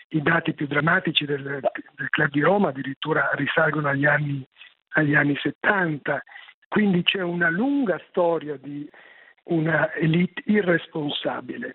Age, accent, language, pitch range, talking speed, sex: 50-69, native, Italian, 150-190 Hz, 130 wpm, male